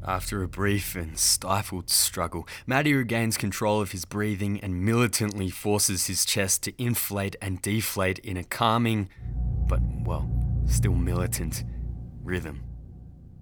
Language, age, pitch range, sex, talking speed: English, 20-39, 85-105 Hz, male, 130 wpm